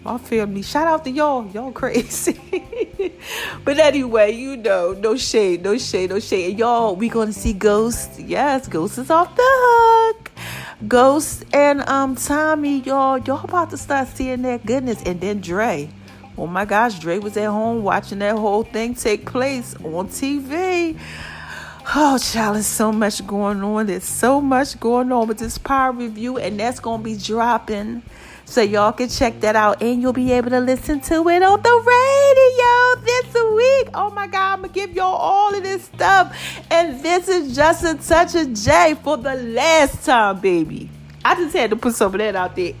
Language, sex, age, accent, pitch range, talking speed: English, female, 40-59, American, 215-335 Hz, 190 wpm